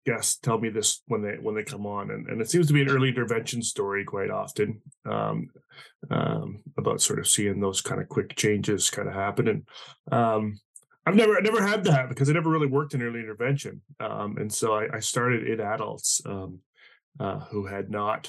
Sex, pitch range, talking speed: male, 100-125 Hz, 215 wpm